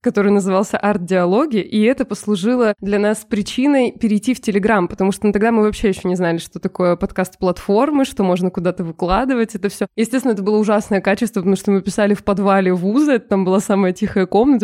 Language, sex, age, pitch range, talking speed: Russian, female, 20-39, 190-225 Hz, 195 wpm